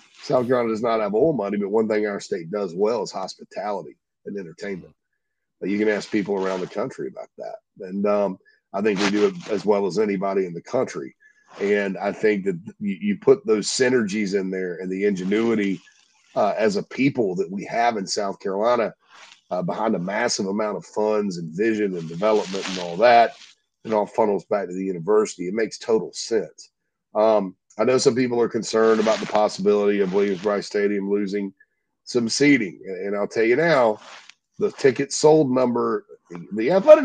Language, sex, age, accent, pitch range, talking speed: English, male, 40-59, American, 100-170 Hz, 190 wpm